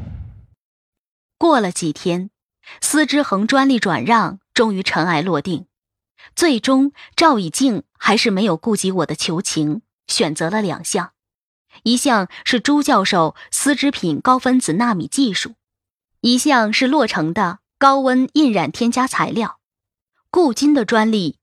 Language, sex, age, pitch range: Chinese, female, 20-39, 180-260 Hz